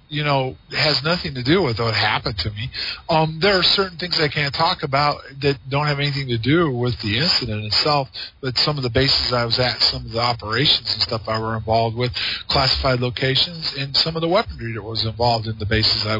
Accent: American